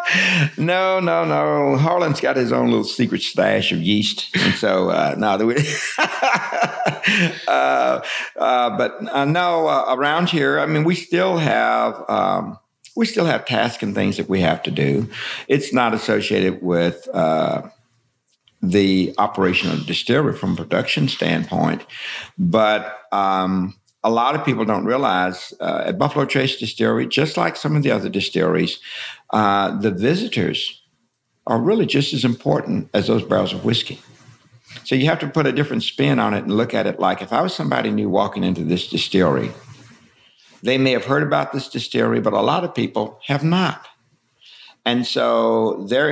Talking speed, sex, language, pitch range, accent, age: 170 wpm, male, English, 105-150 Hz, American, 60-79